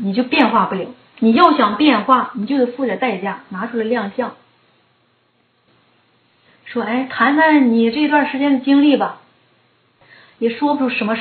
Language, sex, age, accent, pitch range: Chinese, female, 30-49, native, 205-265 Hz